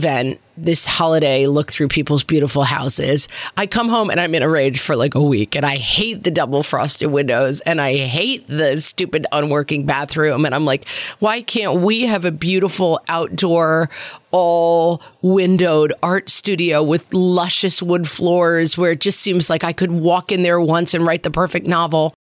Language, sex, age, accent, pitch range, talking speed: English, female, 40-59, American, 150-185 Hz, 185 wpm